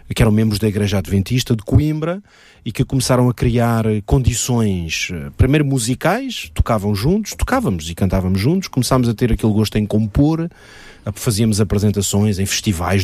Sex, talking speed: male, 150 wpm